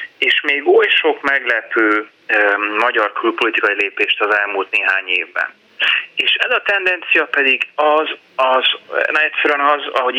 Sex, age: male, 30-49